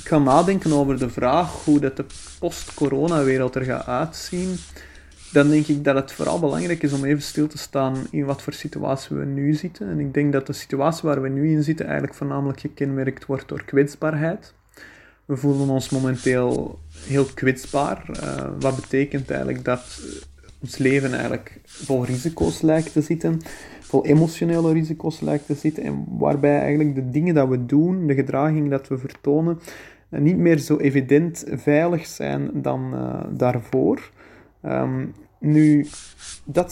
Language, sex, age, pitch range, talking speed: Dutch, male, 30-49, 130-150 Hz, 160 wpm